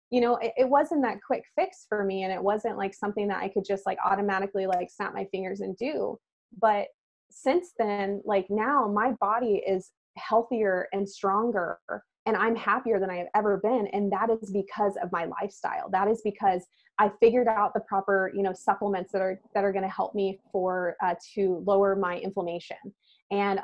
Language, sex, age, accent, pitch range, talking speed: English, female, 20-39, American, 190-230 Hz, 200 wpm